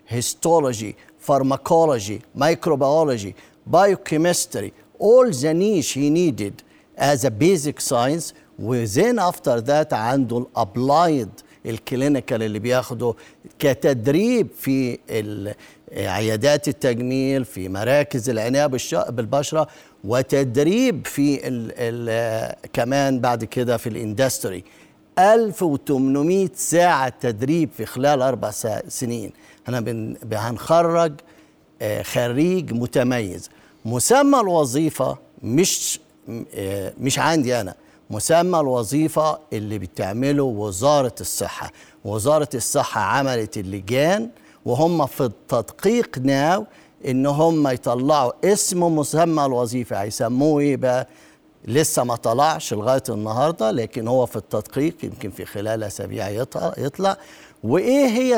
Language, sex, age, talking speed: Arabic, male, 50-69, 100 wpm